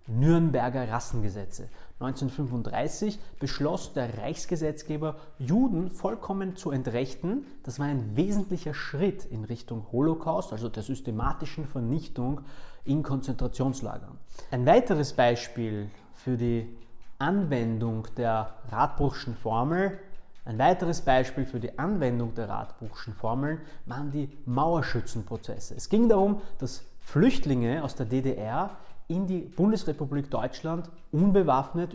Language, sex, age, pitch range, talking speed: German, male, 30-49, 120-160 Hz, 105 wpm